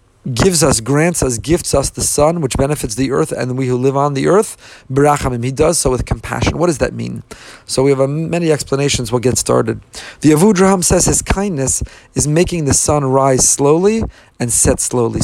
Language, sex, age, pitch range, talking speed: English, male, 40-59, 130-170 Hz, 200 wpm